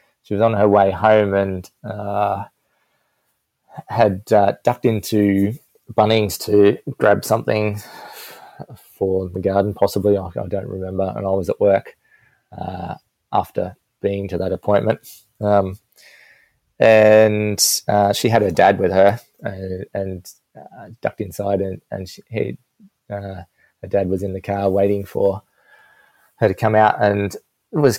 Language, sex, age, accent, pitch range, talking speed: English, male, 20-39, Australian, 95-105 Hz, 140 wpm